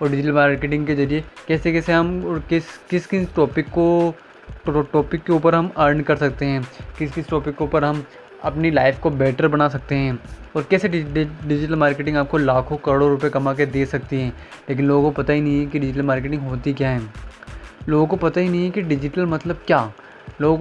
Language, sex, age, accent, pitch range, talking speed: Hindi, male, 20-39, native, 140-165 Hz, 220 wpm